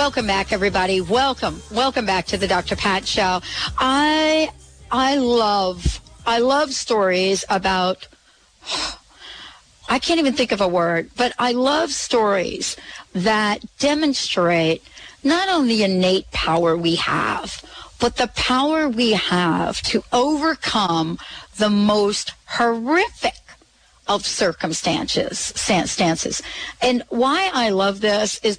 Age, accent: 60-79, American